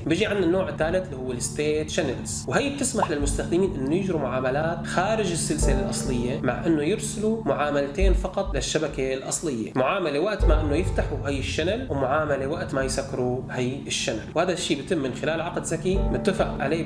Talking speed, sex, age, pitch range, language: 165 wpm, male, 20-39, 130-180 Hz, Arabic